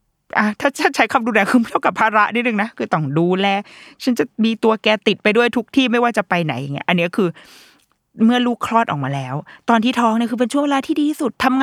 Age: 20-39